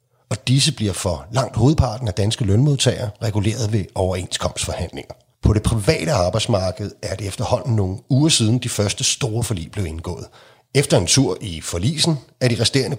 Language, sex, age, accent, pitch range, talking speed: Danish, male, 40-59, native, 105-130 Hz, 165 wpm